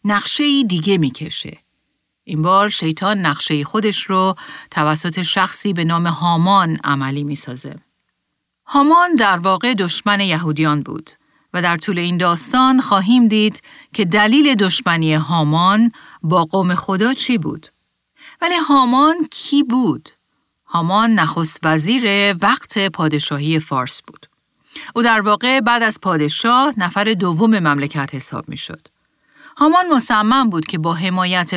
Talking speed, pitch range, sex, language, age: 130 wpm, 160-225 Hz, female, Persian, 40-59